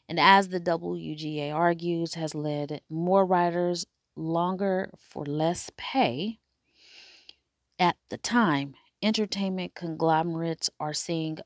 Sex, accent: female, American